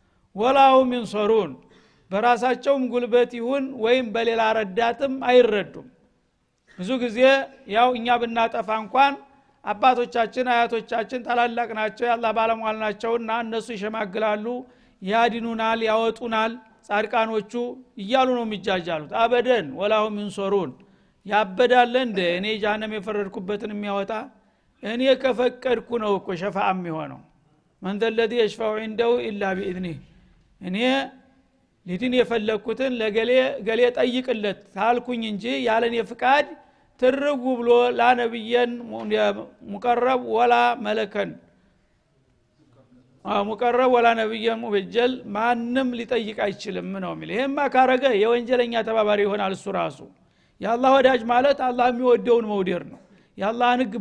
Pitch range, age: 210-245 Hz, 60-79